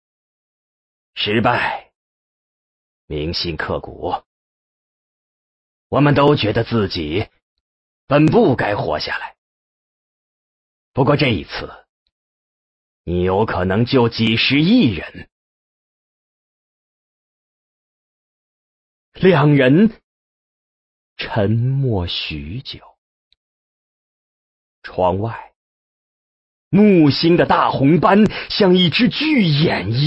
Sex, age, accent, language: male, 40-59, Chinese, English